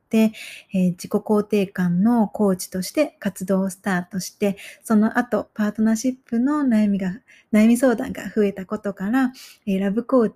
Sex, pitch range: female, 195-245 Hz